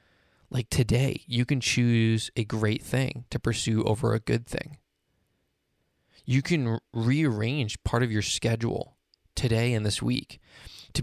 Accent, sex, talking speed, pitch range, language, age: American, male, 145 wpm, 105-135 Hz, English, 20-39